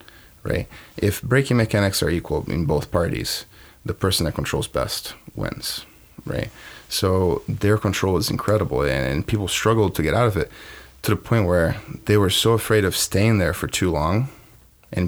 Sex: male